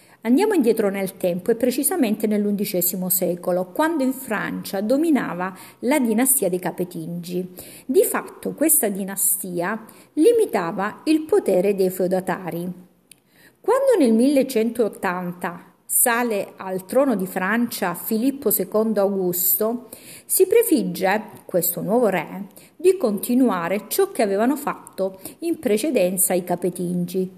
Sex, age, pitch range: female, 50-69, 185-275 Hz